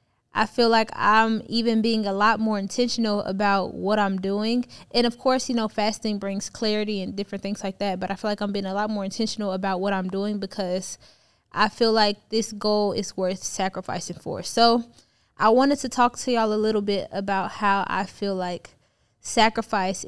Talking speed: 200 wpm